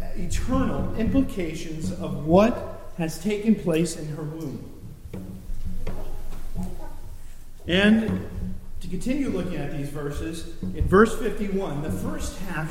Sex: male